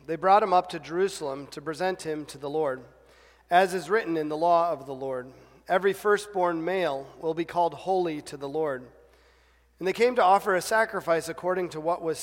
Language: English